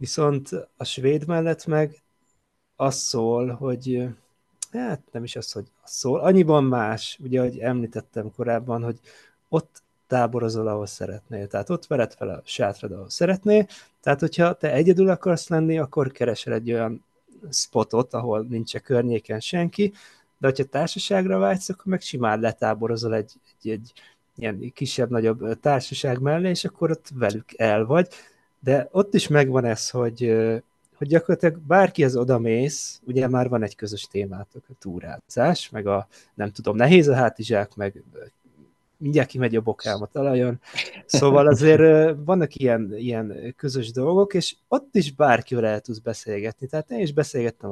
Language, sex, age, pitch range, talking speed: Hungarian, male, 30-49, 115-155 Hz, 150 wpm